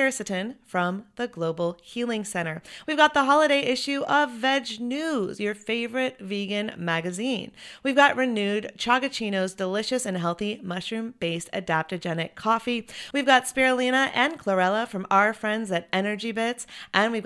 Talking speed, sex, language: 140 wpm, female, English